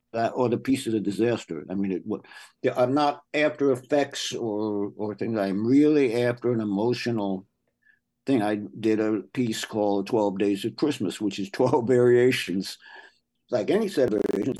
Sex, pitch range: male, 110-140 Hz